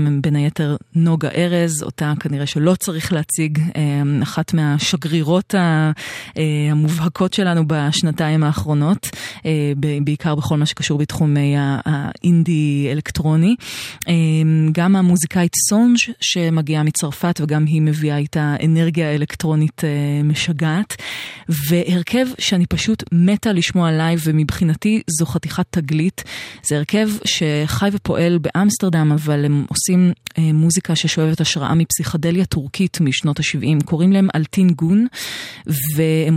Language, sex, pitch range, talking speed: Hebrew, female, 150-175 Hz, 105 wpm